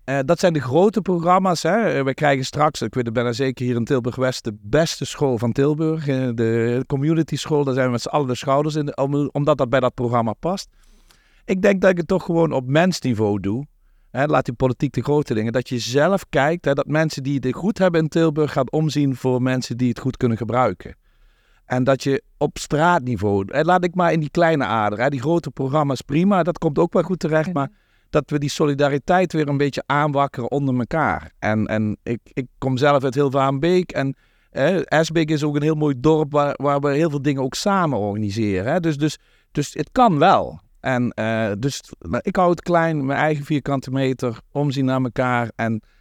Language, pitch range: Dutch, 125-155 Hz